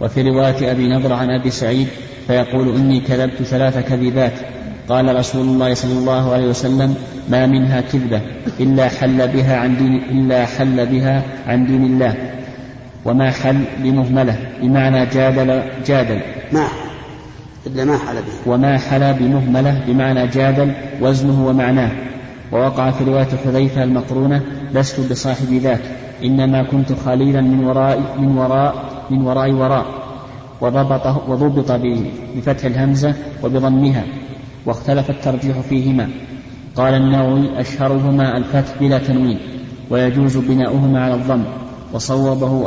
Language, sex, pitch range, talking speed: Arabic, male, 130-135 Hz, 120 wpm